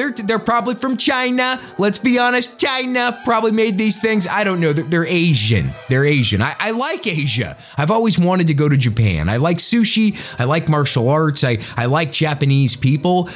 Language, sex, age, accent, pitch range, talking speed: English, male, 30-49, American, 145-205 Hz, 200 wpm